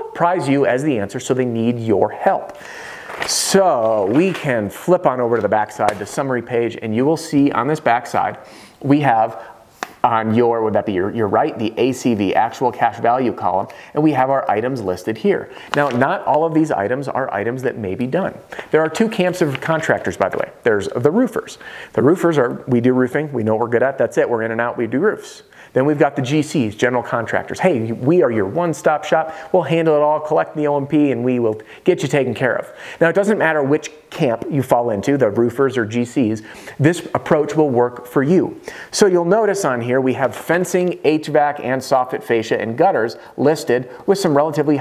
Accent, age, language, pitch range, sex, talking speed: American, 30-49, English, 120-160 Hz, male, 220 wpm